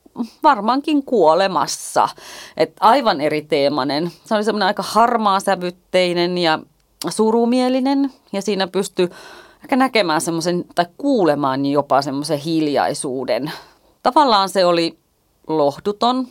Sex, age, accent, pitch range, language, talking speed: female, 30-49, native, 160-195 Hz, Finnish, 105 wpm